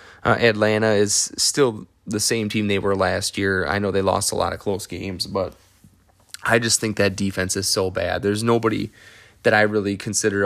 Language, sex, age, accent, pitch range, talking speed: English, male, 20-39, American, 95-110 Hz, 200 wpm